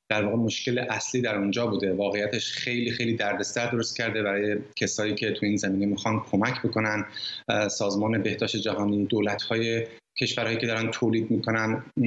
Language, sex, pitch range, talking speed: Persian, male, 105-130 Hz, 155 wpm